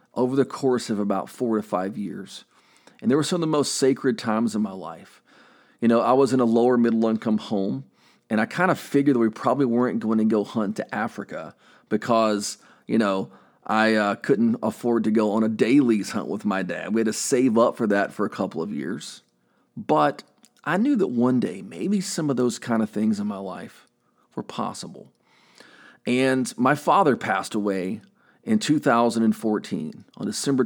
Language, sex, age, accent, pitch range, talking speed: English, male, 40-59, American, 105-125 Hz, 195 wpm